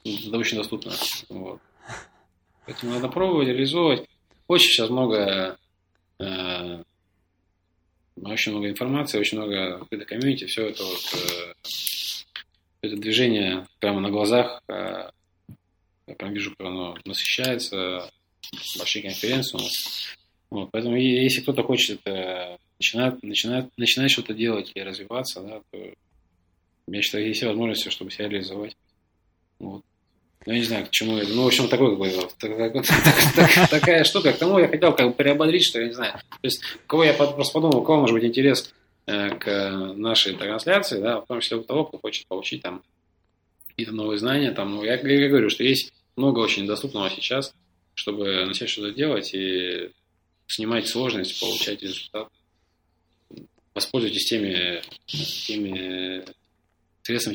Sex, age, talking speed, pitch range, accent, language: male, 20-39, 145 wpm, 90-125 Hz, native, Russian